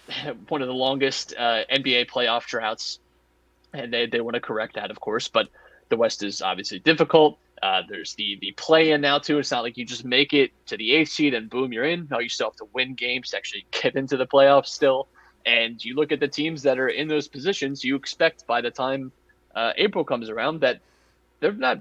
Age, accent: 20-39, American